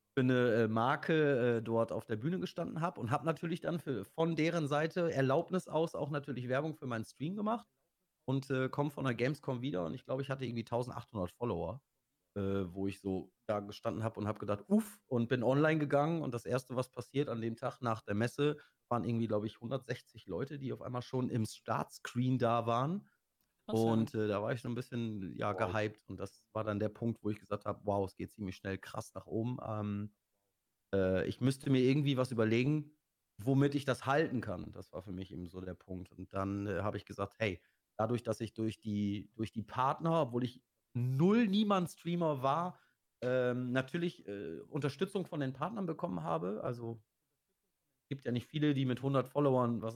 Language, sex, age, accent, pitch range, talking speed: German, male, 30-49, German, 110-145 Hz, 205 wpm